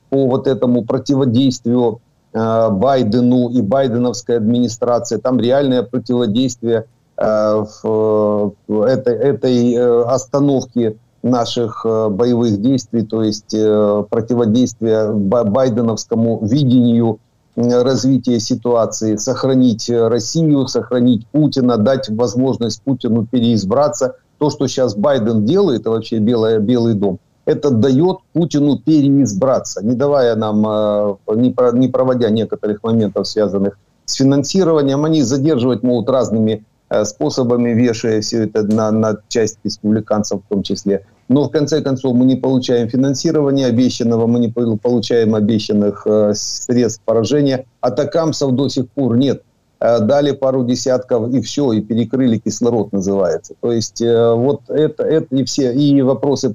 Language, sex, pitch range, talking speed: Ukrainian, male, 110-130 Hz, 120 wpm